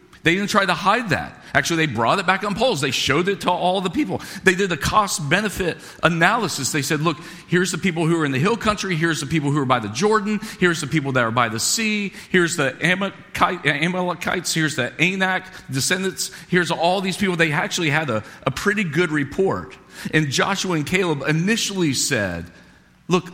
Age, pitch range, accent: 40-59, 145-205 Hz, American